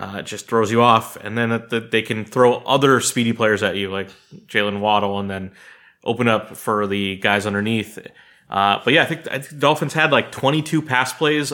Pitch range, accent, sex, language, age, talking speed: 105-130 Hz, American, male, English, 30-49, 215 wpm